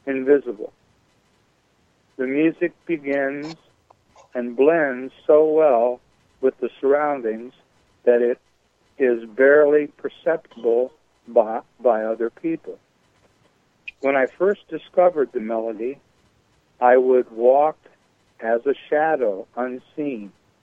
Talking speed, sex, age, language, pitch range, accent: 95 wpm, male, 60-79, English, 120-150 Hz, American